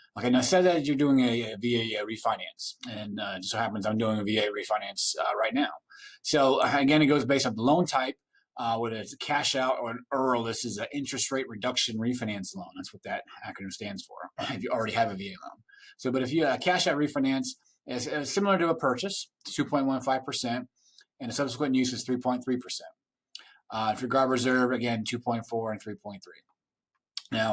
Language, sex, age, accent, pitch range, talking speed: English, male, 30-49, American, 115-145 Hz, 205 wpm